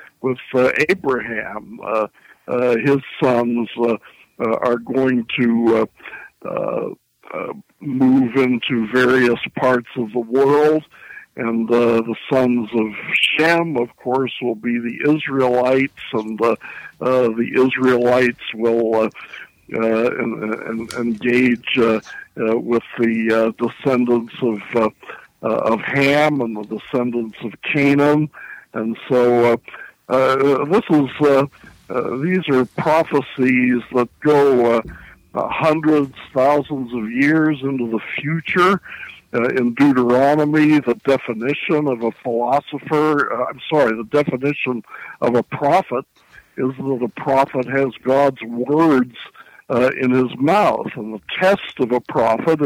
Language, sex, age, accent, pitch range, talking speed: English, male, 60-79, American, 120-140 Hz, 130 wpm